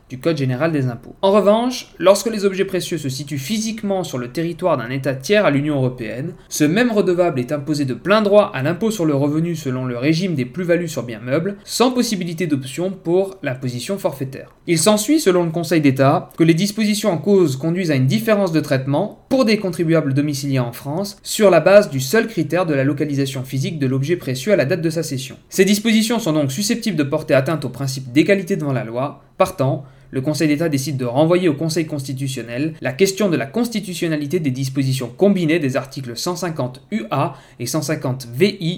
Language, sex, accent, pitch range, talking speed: French, male, French, 135-195 Hz, 205 wpm